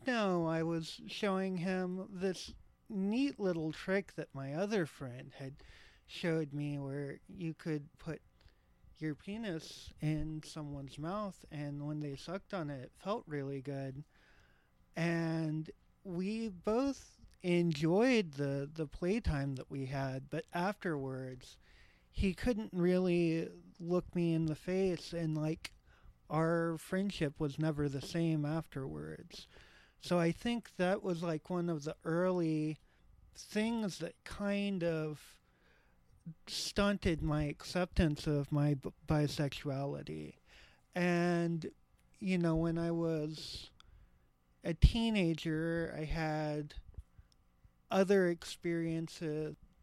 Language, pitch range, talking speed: English, 145-180 Hz, 115 wpm